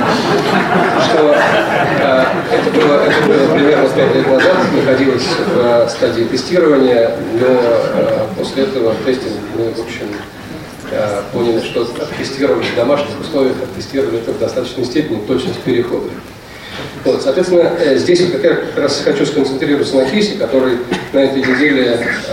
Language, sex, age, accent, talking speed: Russian, male, 40-59, native, 140 wpm